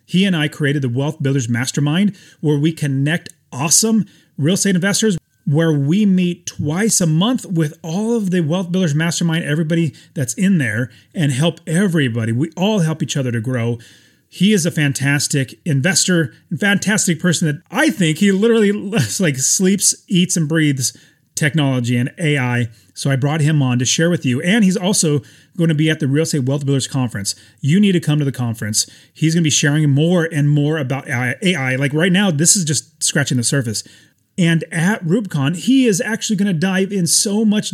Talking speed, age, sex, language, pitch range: 195 wpm, 30-49, male, English, 140-185 Hz